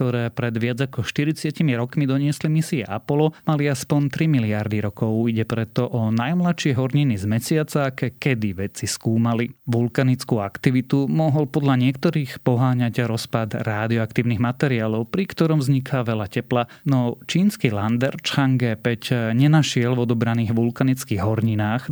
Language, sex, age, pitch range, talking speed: Slovak, male, 30-49, 115-140 Hz, 135 wpm